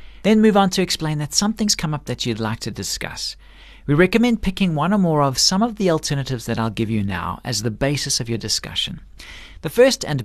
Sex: male